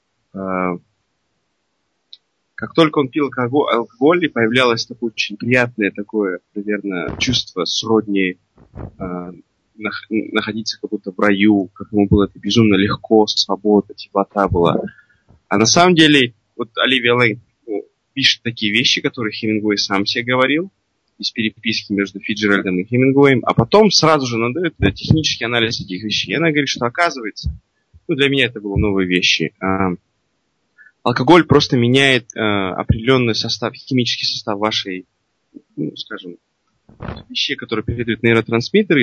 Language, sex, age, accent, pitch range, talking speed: Russian, male, 20-39, native, 105-130 Hz, 135 wpm